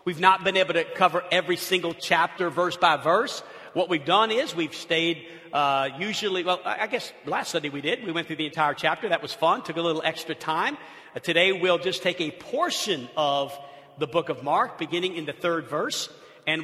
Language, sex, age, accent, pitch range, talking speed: English, male, 50-69, American, 170-215 Hz, 215 wpm